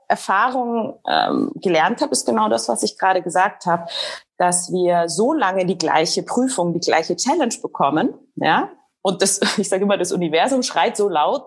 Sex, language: female, German